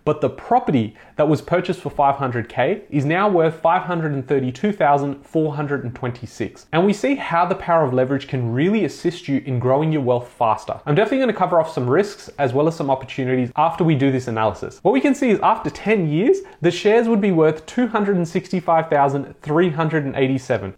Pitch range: 135-180 Hz